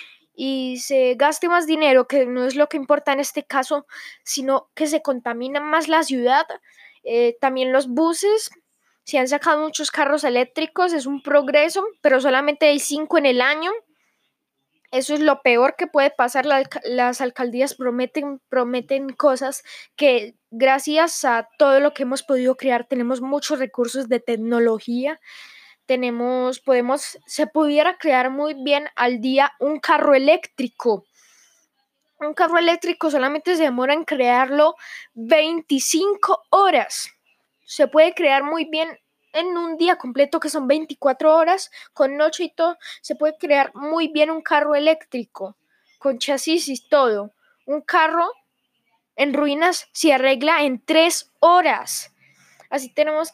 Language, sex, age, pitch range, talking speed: Spanish, female, 10-29, 265-315 Hz, 145 wpm